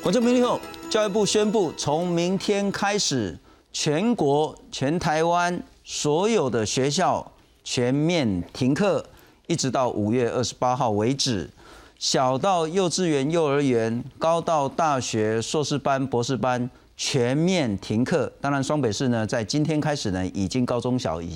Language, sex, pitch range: Chinese, male, 120-170 Hz